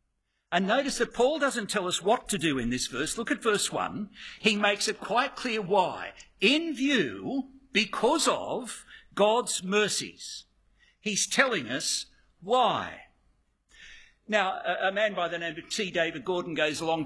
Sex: male